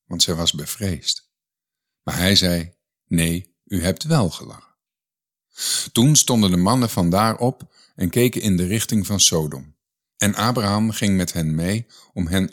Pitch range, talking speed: 85-110 Hz, 165 wpm